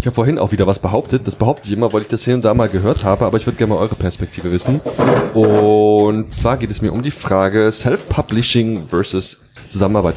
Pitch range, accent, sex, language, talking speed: 100-125 Hz, German, male, German, 230 wpm